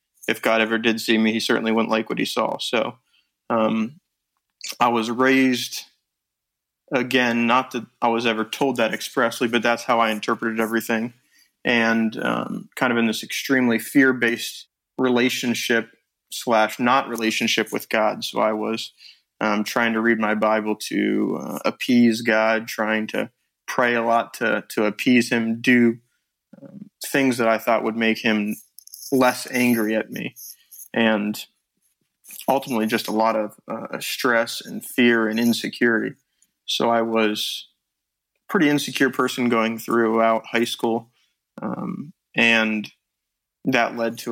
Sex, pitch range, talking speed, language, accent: male, 110-120 Hz, 150 wpm, English, American